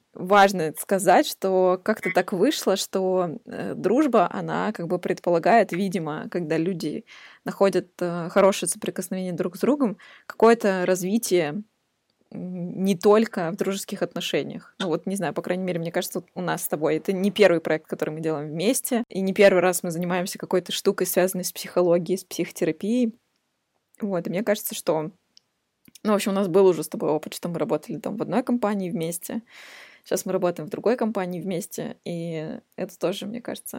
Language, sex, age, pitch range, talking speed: Russian, female, 20-39, 180-215 Hz, 175 wpm